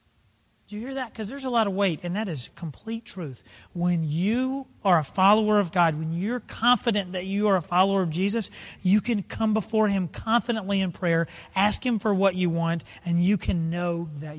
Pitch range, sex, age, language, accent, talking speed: 175-230 Hz, male, 40-59, English, American, 215 wpm